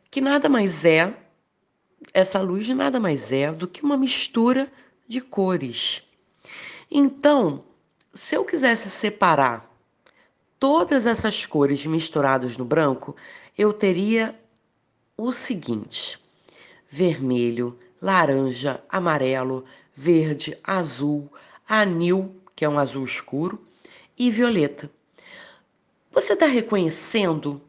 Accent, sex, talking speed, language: Brazilian, female, 100 wpm, Portuguese